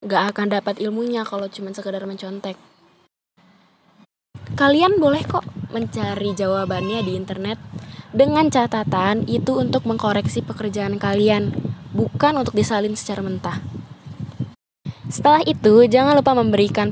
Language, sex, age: Indonesian, female, 10-29